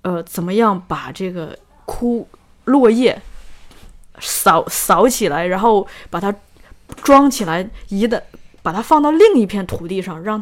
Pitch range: 185-235 Hz